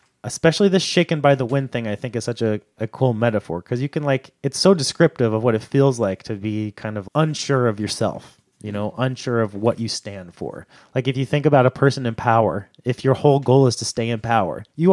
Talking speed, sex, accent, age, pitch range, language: 245 wpm, male, American, 30-49, 105-135 Hz, English